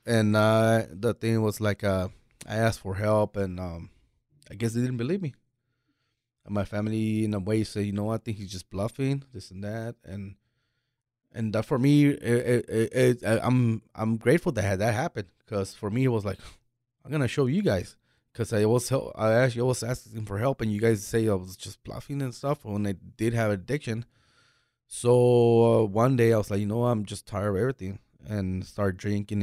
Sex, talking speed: male, 210 wpm